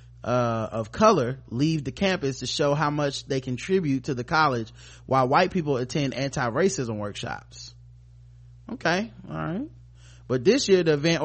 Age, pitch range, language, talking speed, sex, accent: 30-49, 125-155 Hz, English, 155 wpm, male, American